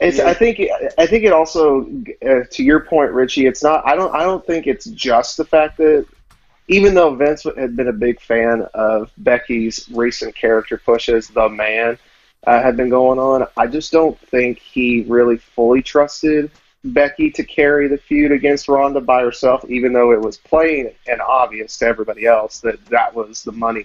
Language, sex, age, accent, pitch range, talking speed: English, male, 30-49, American, 115-145 Hz, 190 wpm